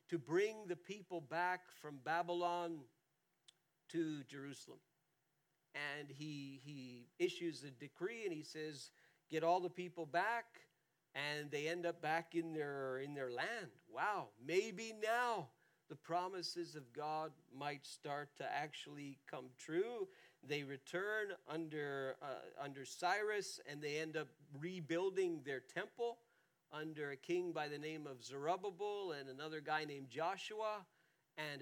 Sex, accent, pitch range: male, American, 155-215 Hz